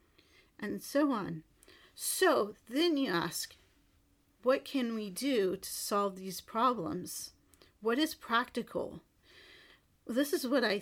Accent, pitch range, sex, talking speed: American, 200-255 Hz, female, 120 wpm